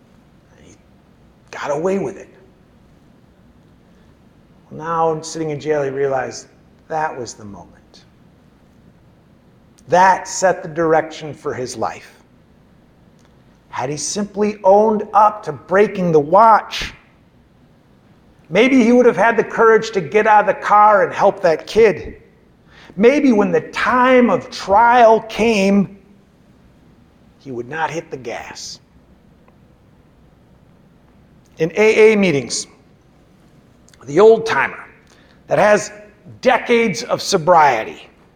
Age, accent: 50-69, American